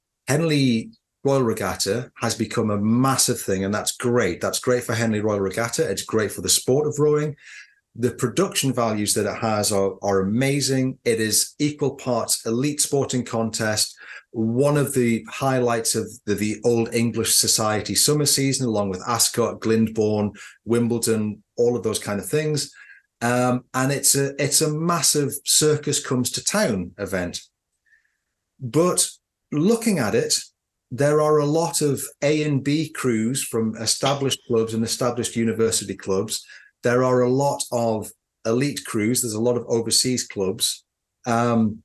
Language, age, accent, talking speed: English, 30-49, British, 155 wpm